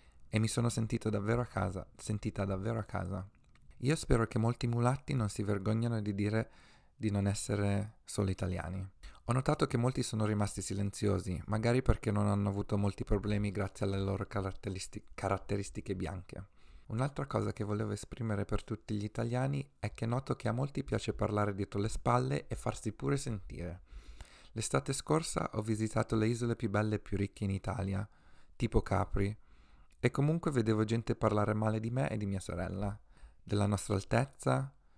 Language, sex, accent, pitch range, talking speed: Italian, male, native, 100-115 Hz, 170 wpm